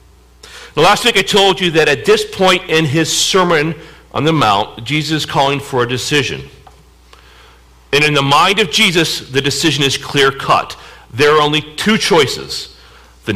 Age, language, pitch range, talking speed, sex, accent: 50-69, English, 120-185 Hz, 170 wpm, male, American